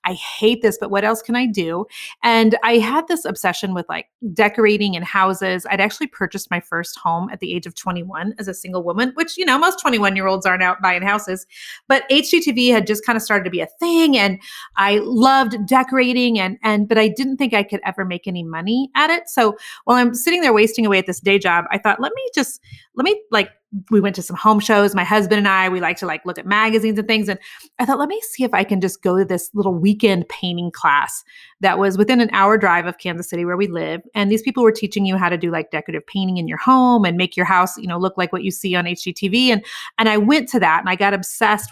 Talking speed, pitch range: 255 wpm, 185-230 Hz